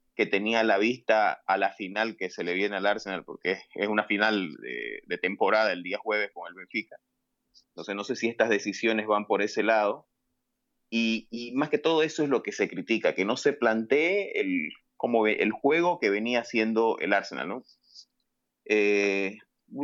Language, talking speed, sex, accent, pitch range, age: Spanish, 190 wpm, male, Venezuelan, 115-175 Hz, 30-49